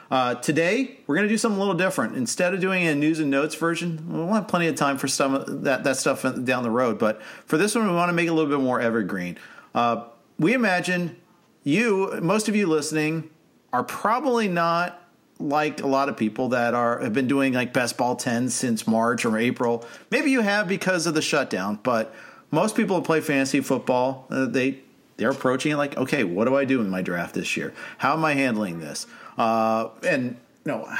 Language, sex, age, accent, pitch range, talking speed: English, male, 40-59, American, 130-180 Hz, 220 wpm